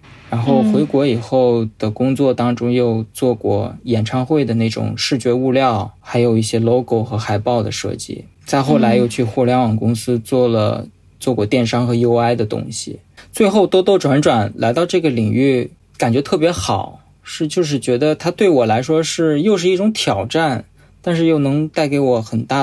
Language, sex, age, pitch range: Chinese, male, 20-39, 115-150 Hz